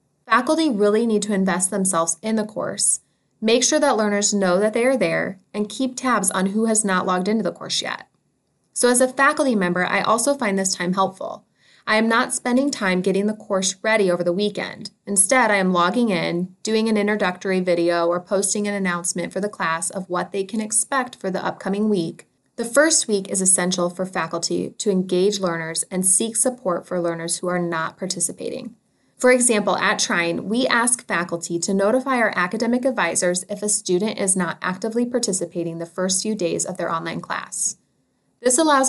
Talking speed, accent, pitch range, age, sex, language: 195 wpm, American, 180-220 Hz, 20-39, female, English